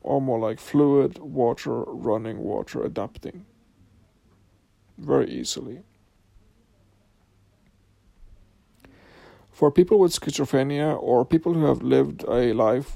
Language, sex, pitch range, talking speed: English, male, 100-145 Hz, 95 wpm